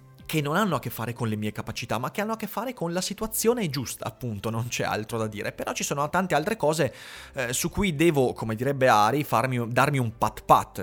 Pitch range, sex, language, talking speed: 115-155 Hz, male, Italian, 240 wpm